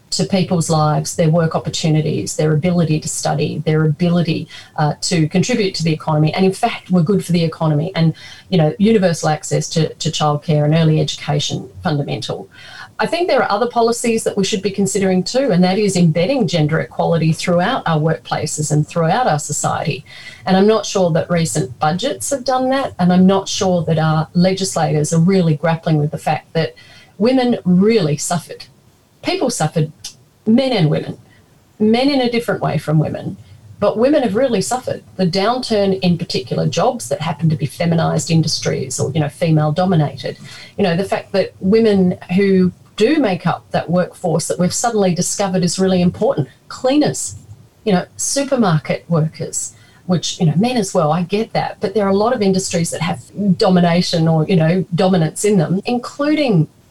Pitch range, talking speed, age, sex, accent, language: 155-200 Hz, 180 wpm, 40-59, female, Australian, English